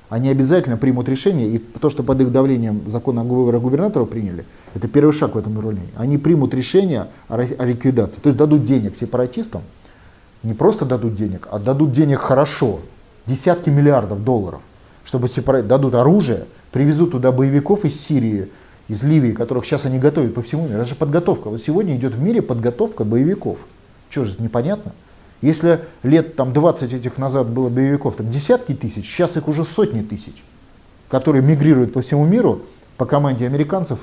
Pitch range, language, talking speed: 115-150 Hz, Russian, 170 wpm